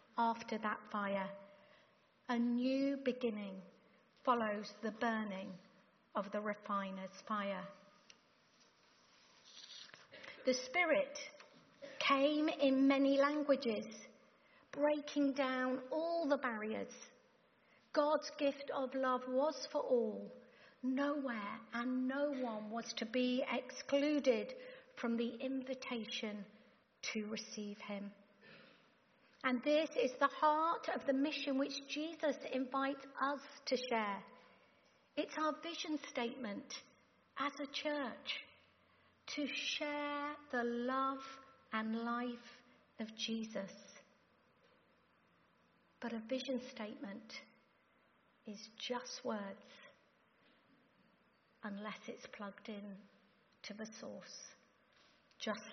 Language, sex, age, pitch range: English, female, 50-69, 220-280 Hz